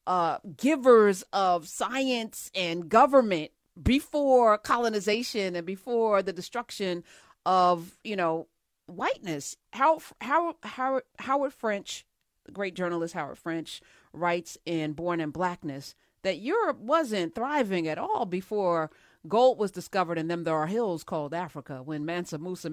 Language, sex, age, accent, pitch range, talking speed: English, female, 40-59, American, 170-235 Hz, 130 wpm